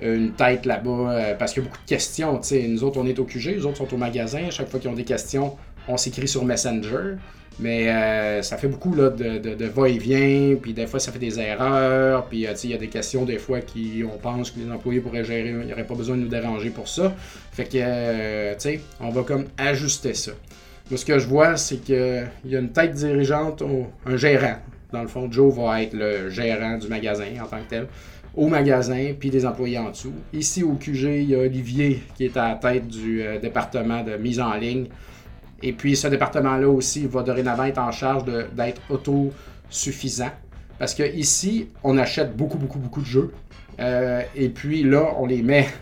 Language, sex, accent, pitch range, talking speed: French, male, Canadian, 115-135 Hz, 220 wpm